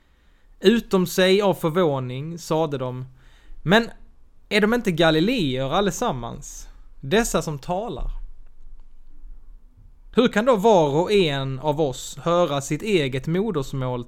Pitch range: 135-190 Hz